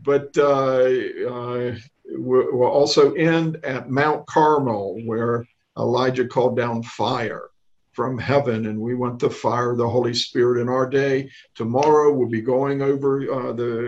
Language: English